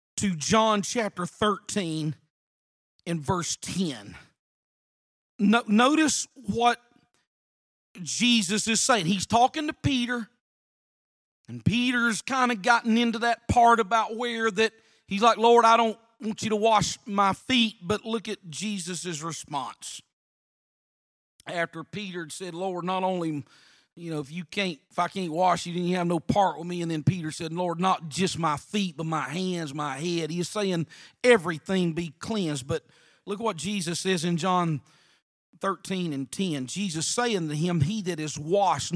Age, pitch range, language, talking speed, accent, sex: 40-59, 165-220 Hz, English, 155 wpm, American, male